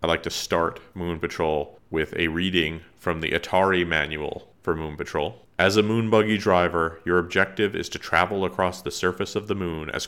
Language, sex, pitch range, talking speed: English, male, 85-95 Hz, 195 wpm